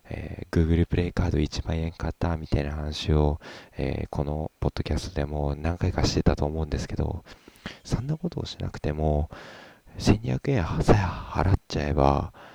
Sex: male